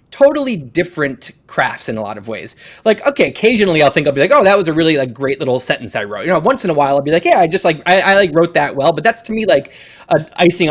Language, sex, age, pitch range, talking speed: English, male, 20-39, 130-175 Hz, 295 wpm